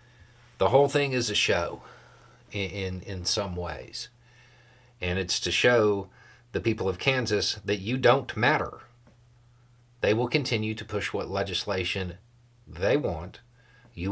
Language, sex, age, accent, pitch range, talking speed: English, male, 50-69, American, 105-120 Hz, 140 wpm